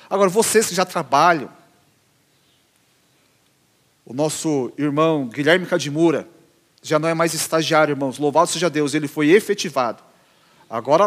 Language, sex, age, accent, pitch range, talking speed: Portuguese, male, 40-59, Brazilian, 155-205 Hz, 125 wpm